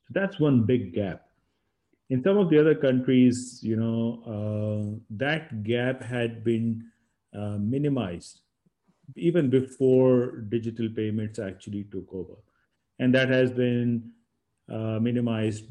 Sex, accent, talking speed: male, Indian, 120 wpm